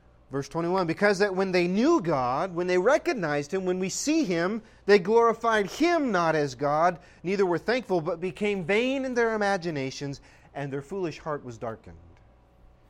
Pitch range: 130-210 Hz